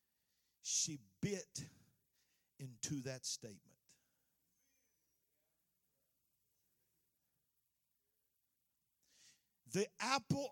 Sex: male